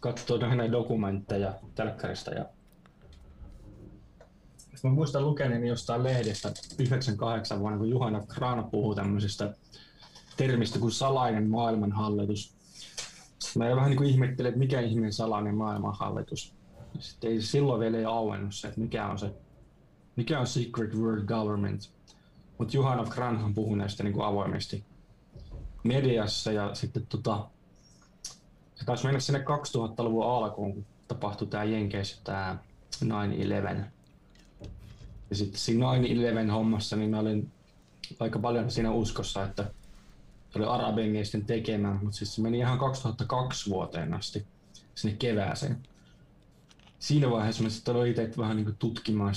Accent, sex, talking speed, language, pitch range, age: native, male, 125 wpm, Finnish, 105-120 Hz, 20-39